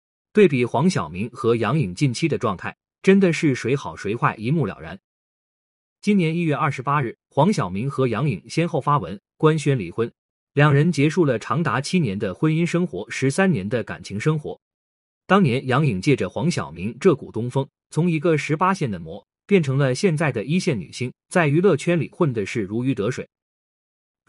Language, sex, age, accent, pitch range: Chinese, male, 30-49, native, 130-175 Hz